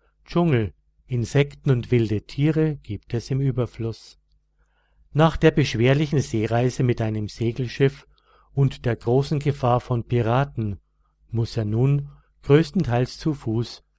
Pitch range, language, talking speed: 110-140 Hz, German, 120 wpm